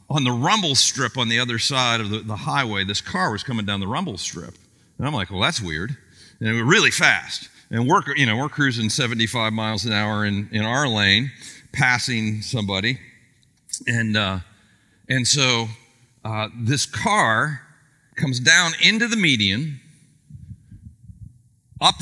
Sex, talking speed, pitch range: male, 165 wpm, 115-155 Hz